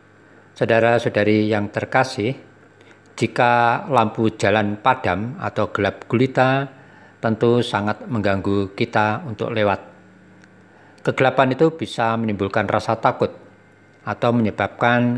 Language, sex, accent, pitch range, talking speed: Indonesian, male, native, 105-130 Hz, 95 wpm